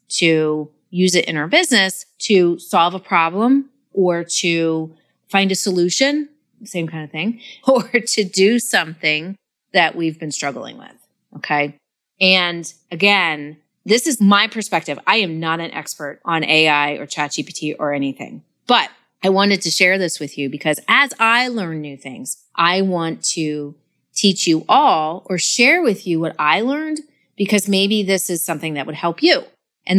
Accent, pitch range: American, 160-205 Hz